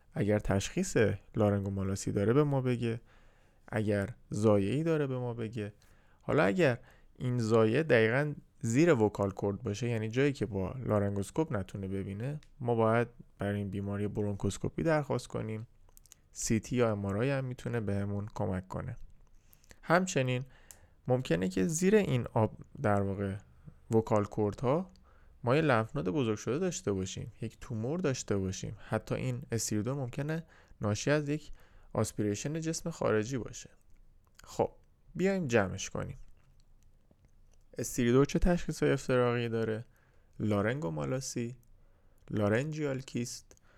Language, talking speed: Persian, 125 wpm